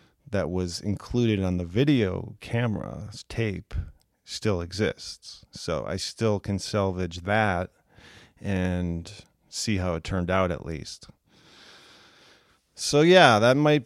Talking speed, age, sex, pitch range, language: 120 wpm, 40-59, male, 90-105 Hz, English